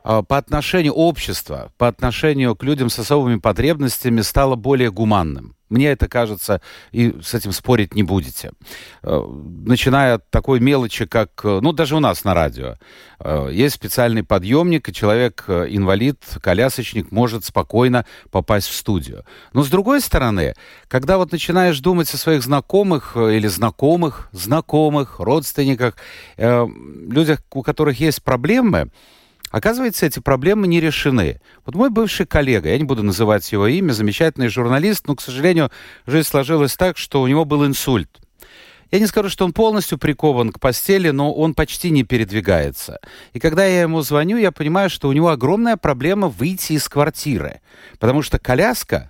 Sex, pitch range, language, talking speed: male, 110-160 Hz, Russian, 150 wpm